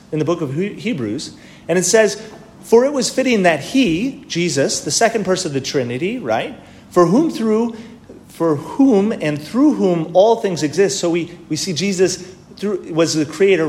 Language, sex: English, male